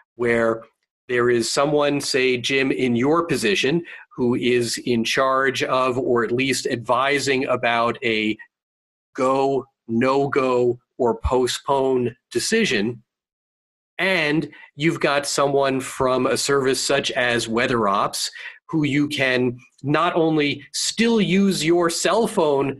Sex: male